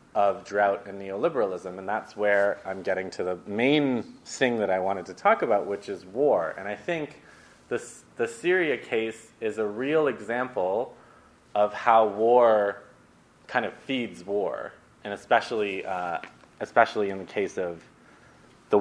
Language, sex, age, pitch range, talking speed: English, male, 20-39, 95-125 Hz, 155 wpm